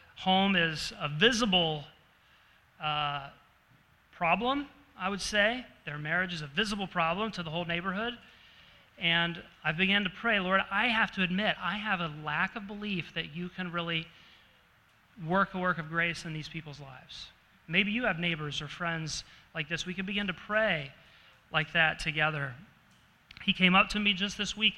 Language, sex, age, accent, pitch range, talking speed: English, male, 30-49, American, 155-200 Hz, 175 wpm